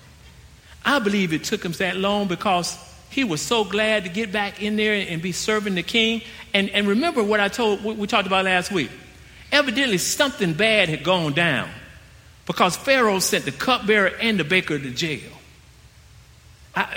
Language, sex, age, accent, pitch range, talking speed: English, male, 50-69, American, 190-255 Hz, 175 wpm